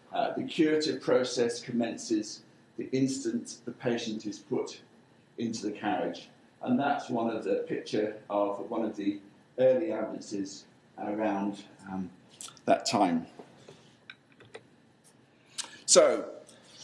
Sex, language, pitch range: male, English, 110-130 Hz